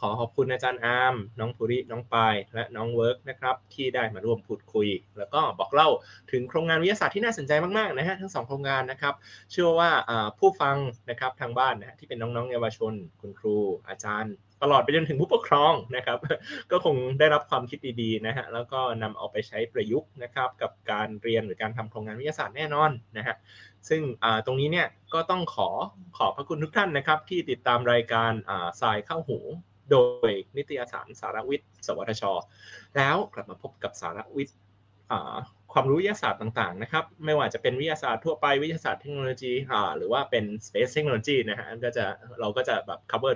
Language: Thai